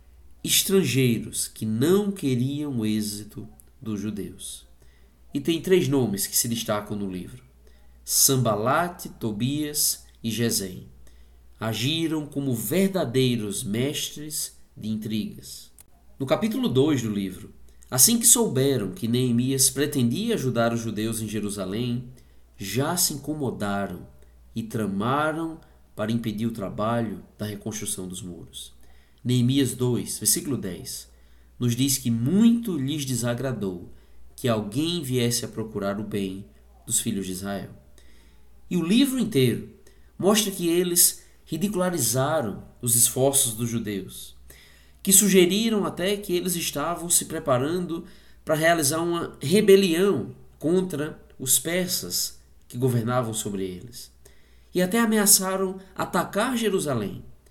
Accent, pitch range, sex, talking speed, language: Brazilian, 95-160 Hz, male, 120 wpm, Portuguese